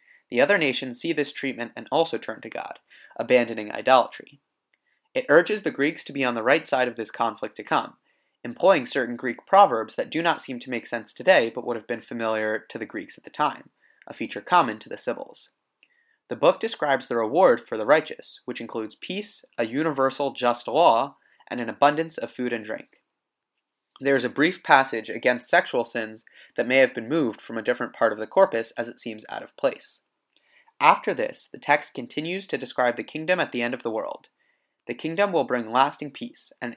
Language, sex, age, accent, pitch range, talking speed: English, male, 30-49, American, 120-160 Hz, 205 wpm